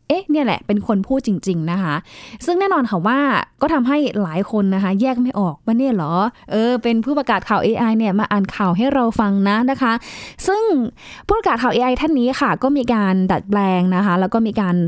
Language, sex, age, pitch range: Thai, female, 20-39, 190-250 Hz